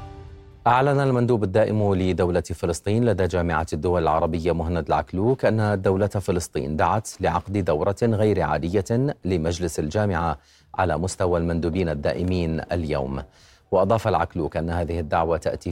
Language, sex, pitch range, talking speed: Arabic, male, 80-100 Hz, 120 wpm